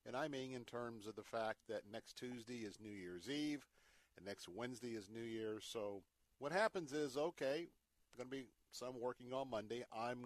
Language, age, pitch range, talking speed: English, 50-69, 95-120 Hz, 200 wpm